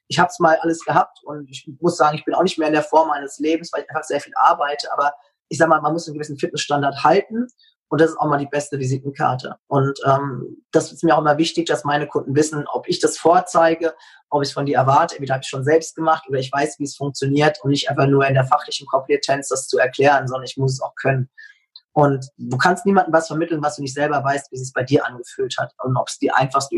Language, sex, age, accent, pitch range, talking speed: German, male, 20-39, German, 145-170 Hz, 265 wpm